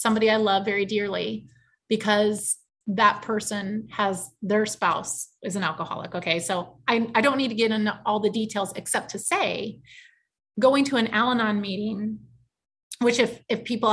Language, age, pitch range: English, 30-49, 190-215 Hz